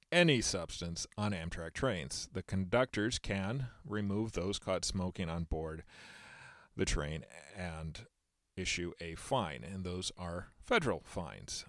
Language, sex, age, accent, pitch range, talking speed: English, male, 40-59, American, 90-115 Hz, 130 wpm